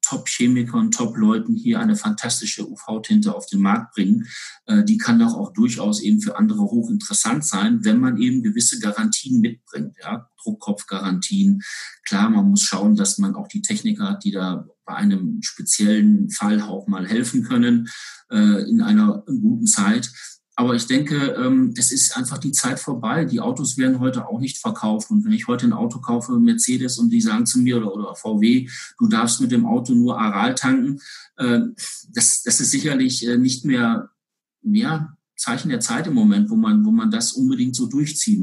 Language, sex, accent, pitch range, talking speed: German, male, German, 200-230 Hz, 175 wpm